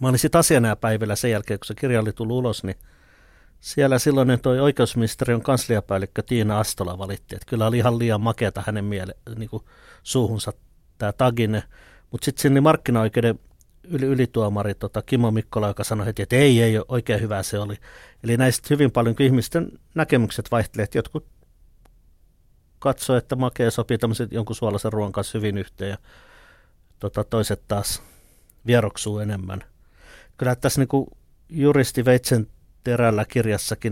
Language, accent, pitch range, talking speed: Finnish, native, 105-125 Hz, 150 wpm